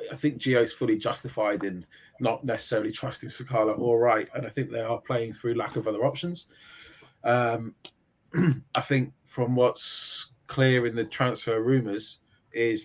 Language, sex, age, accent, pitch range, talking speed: English, male, 20-39, British, 110-135 Hz, 165 wpm